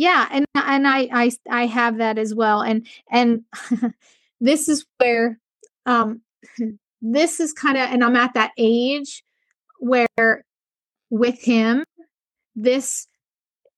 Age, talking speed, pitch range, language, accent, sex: 20-39, 125 wpm, 220-260 Hz, English, American, female